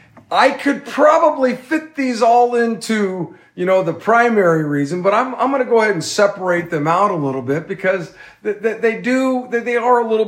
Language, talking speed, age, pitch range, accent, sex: English, 205 wpm, 40-59, 145-205 Hz, American, male